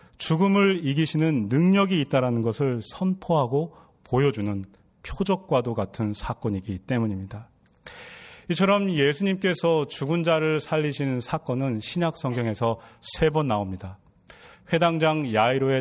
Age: 30-49